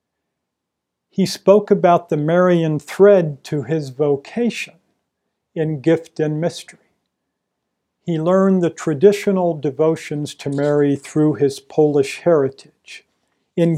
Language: English